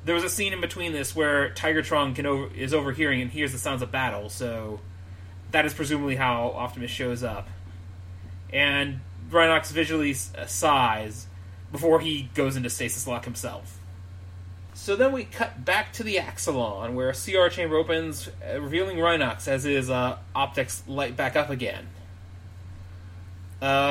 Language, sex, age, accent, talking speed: English, male, 30-49, American, 150 wpm